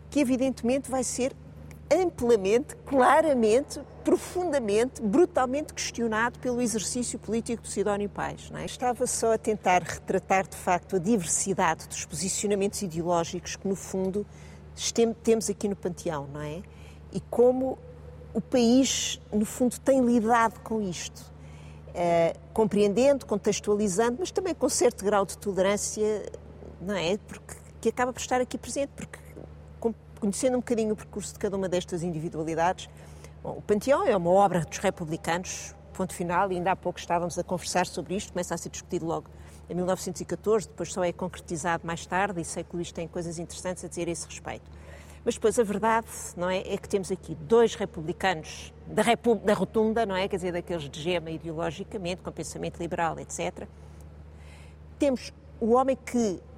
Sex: female